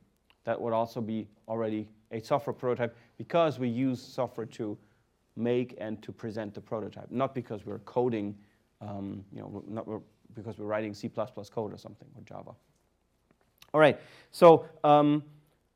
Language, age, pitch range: English, 30-49, 110-135 Hz